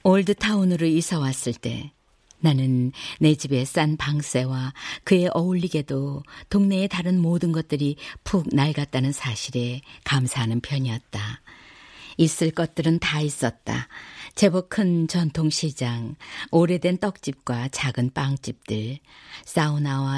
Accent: native